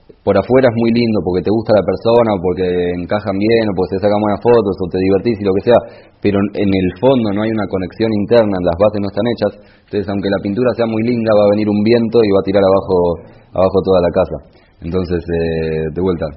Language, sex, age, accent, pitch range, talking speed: English, male, 20-39, Argentinian, 85-100 Hz, 240 wpm